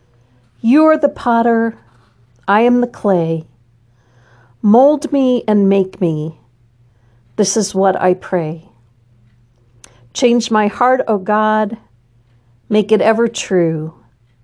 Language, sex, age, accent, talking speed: English, female, 50-69, American, 110 wpm